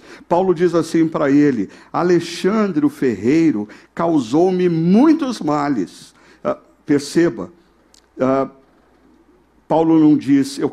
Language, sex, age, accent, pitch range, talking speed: Portuguese, male, 50-69, Brazilian, 130-185 Hz, 90 wpm